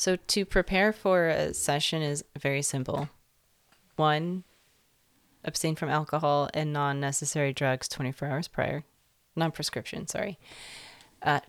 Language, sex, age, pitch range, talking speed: English, female, 30-49, 135-160 Hz, 115 wpm